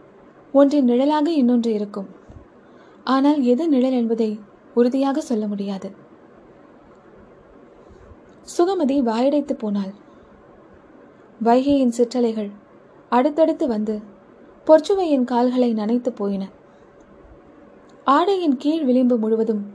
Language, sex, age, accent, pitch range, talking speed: Tamil, female, 20-39, native, 225-275 Hz, 80 wpm